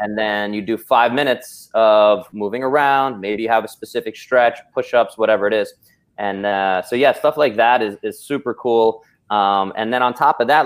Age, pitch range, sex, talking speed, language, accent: 20-39, 100-120 Hz, male, 210 wpm, English, American